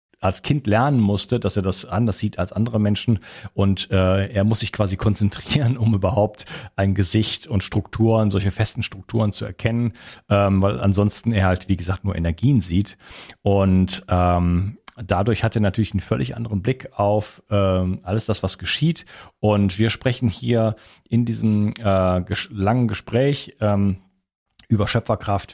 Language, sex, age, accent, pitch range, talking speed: German, male, 40-59, German, 95-110 Hz, 160 wpm